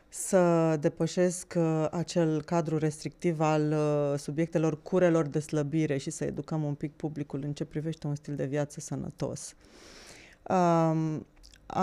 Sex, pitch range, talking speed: female, 160-195 Hz, 135 wpm